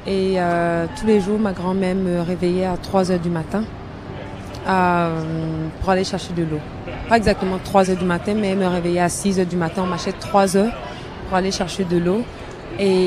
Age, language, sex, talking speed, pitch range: 20-39, French, female, 190 wpm, 185-255 Hz